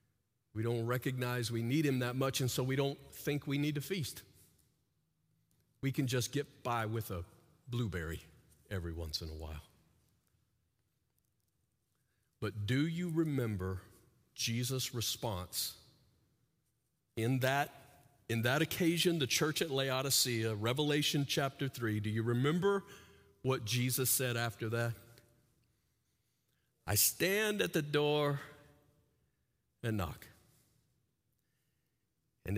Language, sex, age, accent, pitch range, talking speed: English, male, 50-69, American, 105-140 Hz, 120 wpm